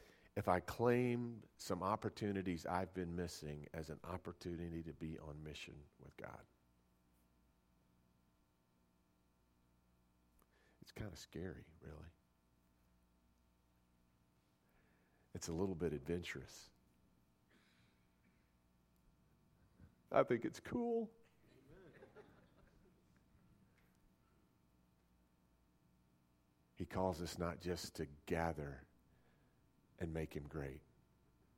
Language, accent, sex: English, American, male